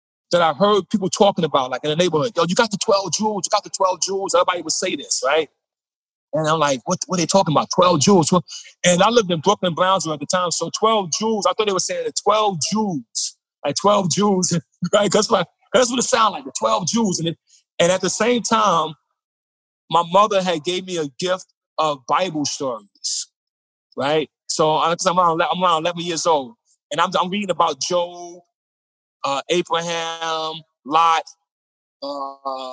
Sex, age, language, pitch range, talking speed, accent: male, 20-39, English, 155-195 Hz, 195 wpm, American